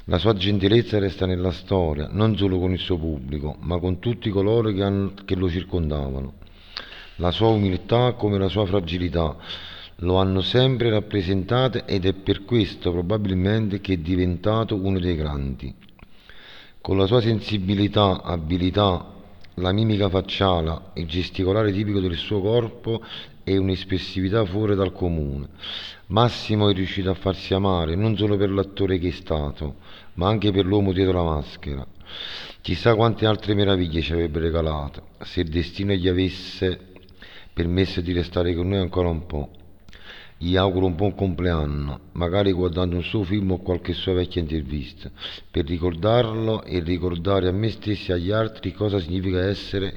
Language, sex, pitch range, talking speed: Italian, male, 85-105 Hz, 155 wpm